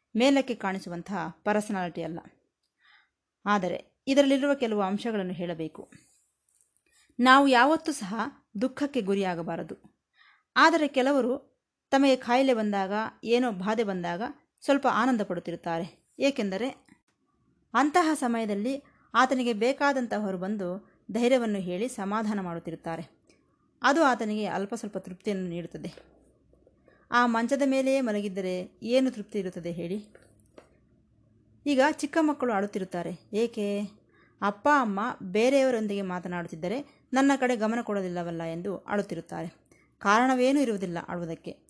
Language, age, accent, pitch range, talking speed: Kannada, 20-39, native, 190-255 Hz, 95 wpm